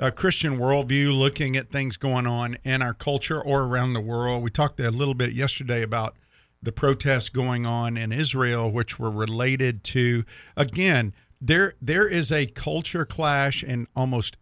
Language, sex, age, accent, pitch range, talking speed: English, male, 50-69, American, 115-150 Hz, 170 wpm